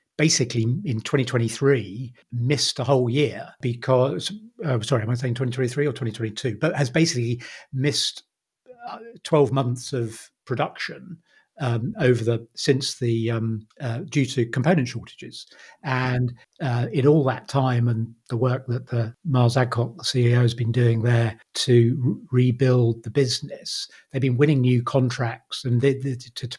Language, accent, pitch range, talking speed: English, British, 120-140 Hz, 155 wpm